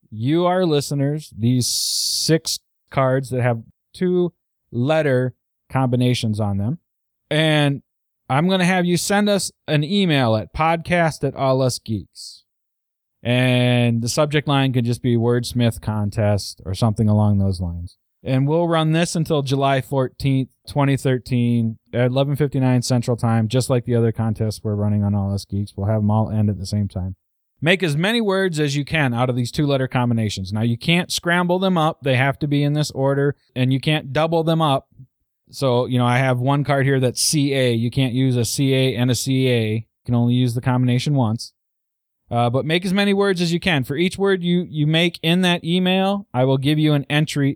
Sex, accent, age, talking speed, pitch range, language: male, American, 20-39, 195 wpm, 115-150 Hz, English